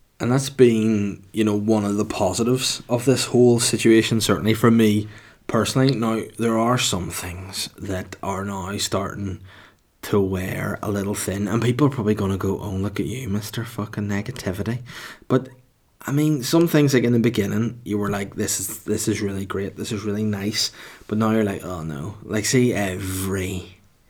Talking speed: 185 wpm